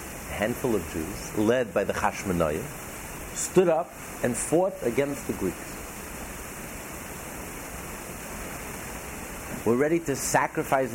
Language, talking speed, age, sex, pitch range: English, 100 wpm, 60-79, male, 85-140 Hz